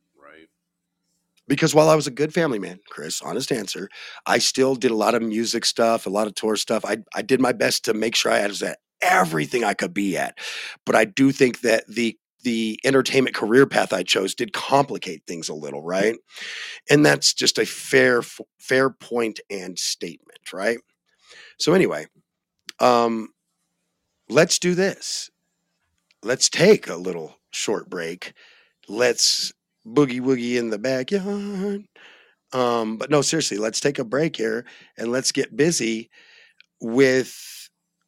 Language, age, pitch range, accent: English, 40-59, 115-155 Hz, American